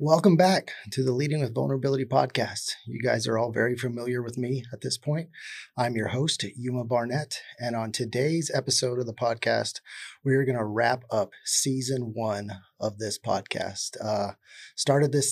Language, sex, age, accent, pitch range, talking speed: English, male, 30-49, American, 110-130 Hz, 175 wpm